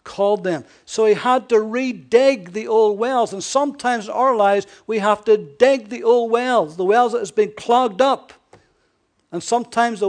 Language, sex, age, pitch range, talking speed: English, male, 60-79, 155-225 Hz, 190 wpm